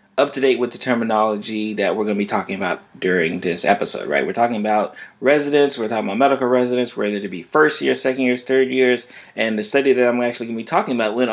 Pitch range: 105-130 Hz